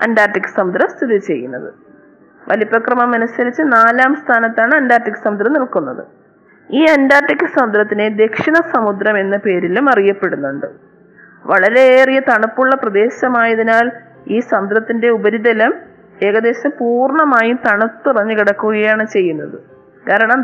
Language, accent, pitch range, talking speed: Malayalam, native, 210-265 Hz, 90 wpm